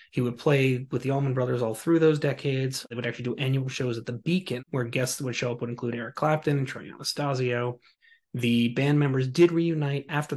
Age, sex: 30-49, male